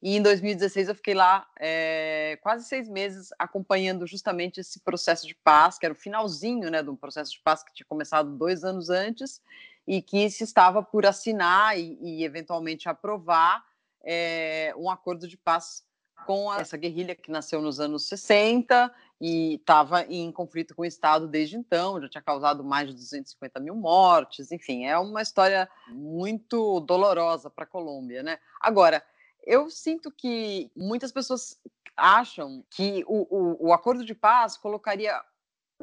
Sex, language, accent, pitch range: female, Portuguese, Brazilian, 165-220 Hz